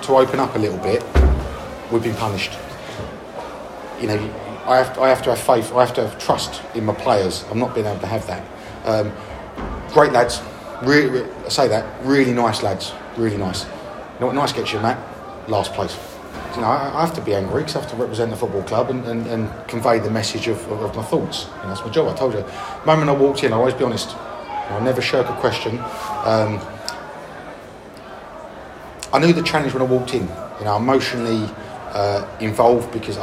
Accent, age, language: British, 30-49, English